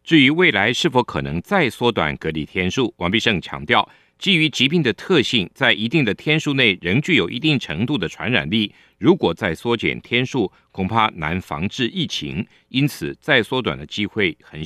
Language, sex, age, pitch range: Chinese, male, 50-69, 95-135 Hz